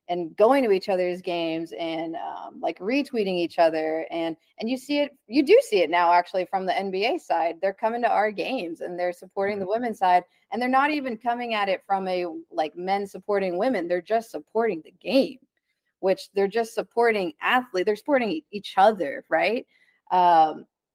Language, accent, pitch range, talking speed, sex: English, American, 175-210 Hz, 190 wpm, female